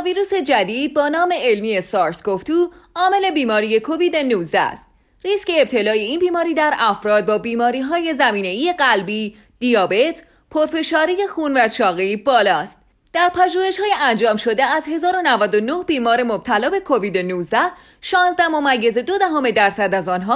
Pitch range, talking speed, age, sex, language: 215-345 Hz, 140 wpm, 30-49, female, Persian